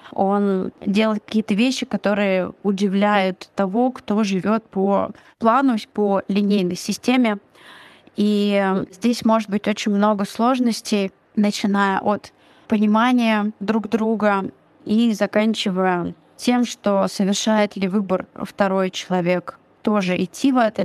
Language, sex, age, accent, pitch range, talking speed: Russian, female, 20-39, native, 190-215 Hz, 110 wpm